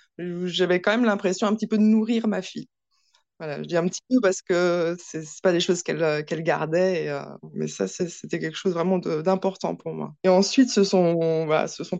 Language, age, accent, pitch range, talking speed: French, 20-39, French, 165-205 Hz, 230 wpm